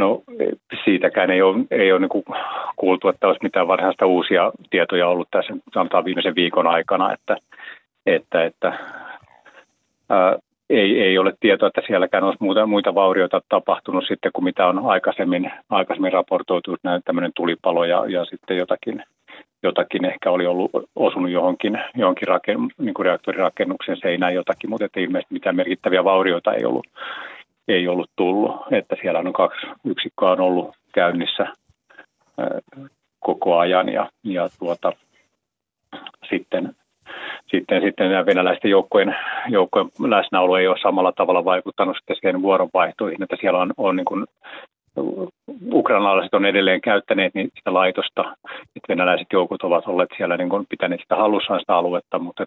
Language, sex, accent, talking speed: Finnish, male, native, 140 wpm